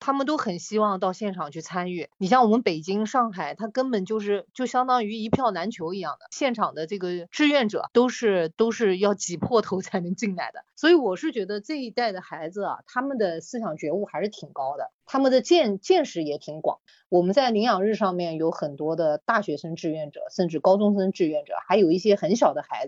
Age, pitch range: 30-49, 175-245 Hz